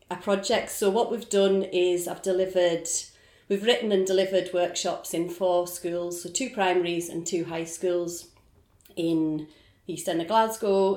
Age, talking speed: 30-49, 160 wpm